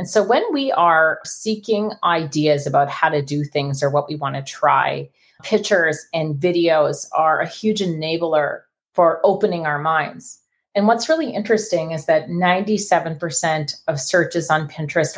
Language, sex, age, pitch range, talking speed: English, female, 30-49, 150-185 Hz, 160 wpm